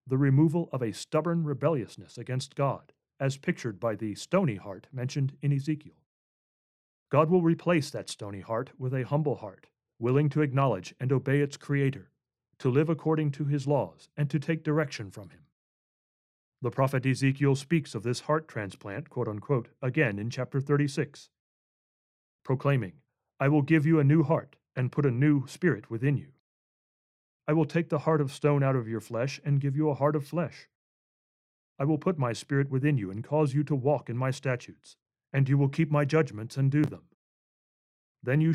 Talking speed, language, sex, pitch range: 185 wpm, English, male, 120-150 Hz